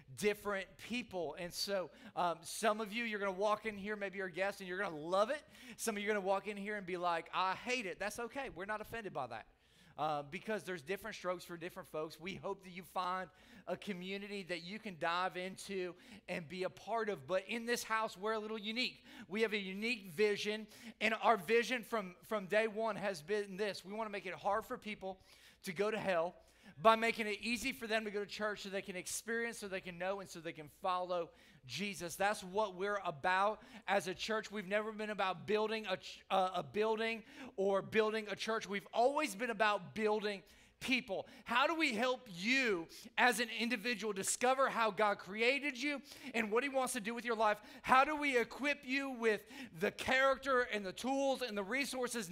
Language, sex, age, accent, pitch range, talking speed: English, male, 30-49, American, 190-230 Hz, 220 wpm